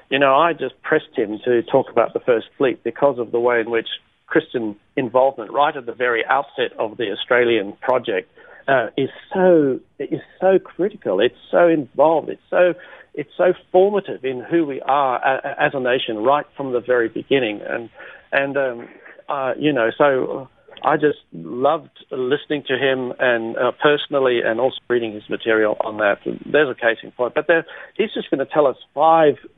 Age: 50-69